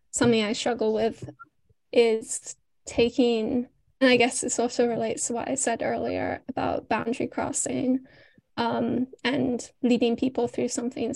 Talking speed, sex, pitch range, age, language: 140 wpm, female, 225-260 Hz, 10-29, English